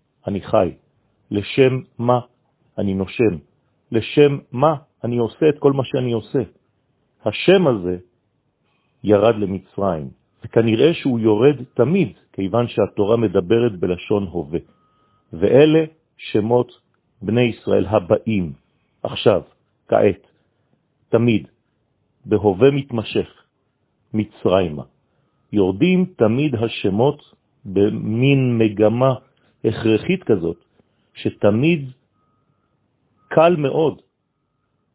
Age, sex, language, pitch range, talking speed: 50-69, male, French, 105-135 Hz, 80 wpm